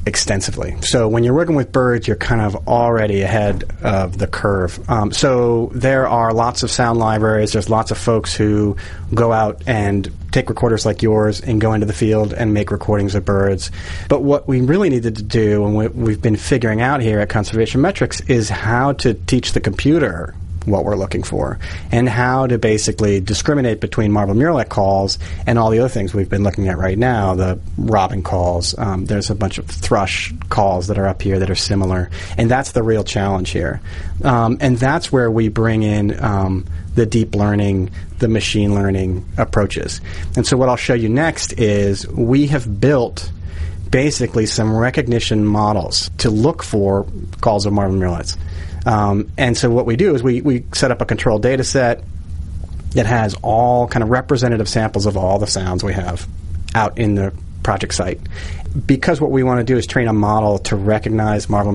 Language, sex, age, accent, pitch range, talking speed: English, male, 30-49, American, 95-120 Hz, 190 wpm